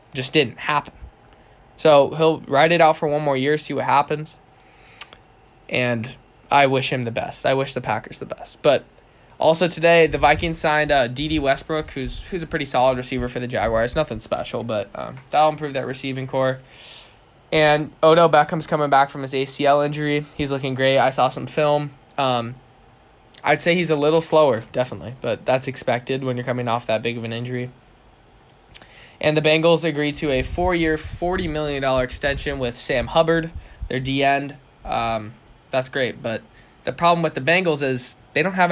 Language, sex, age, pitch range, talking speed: English, male, 10-29, 125-155 Hz, 185 wpm